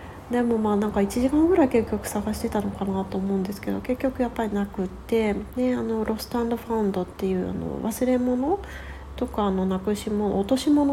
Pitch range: 185-235 Hz